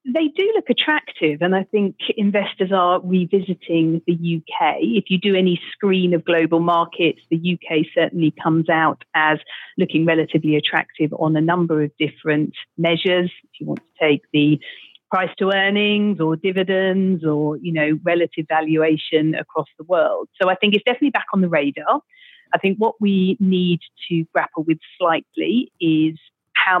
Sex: female